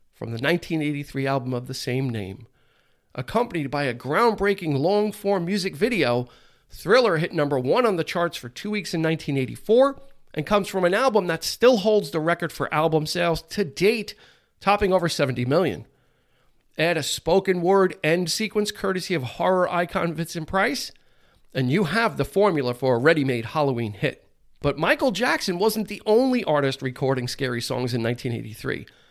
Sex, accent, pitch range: male, American, 140-200 Hz